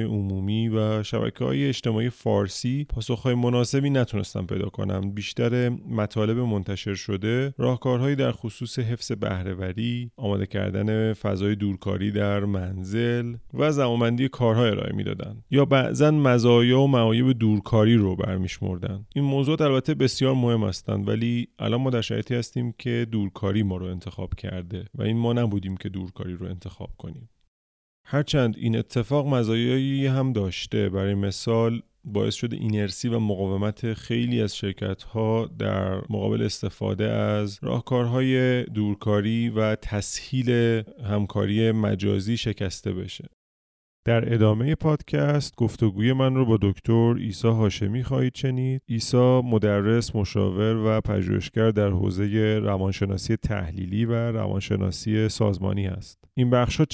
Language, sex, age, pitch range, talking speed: Persian, male, 30-49, 100-120 Hz, 130 wpm